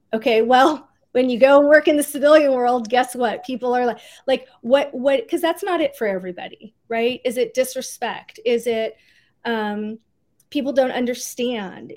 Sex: female